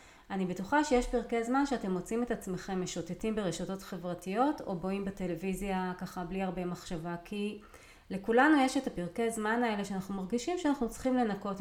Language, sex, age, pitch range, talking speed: Hebrew, female, 30-49, 180-235 Hz, 160 wpm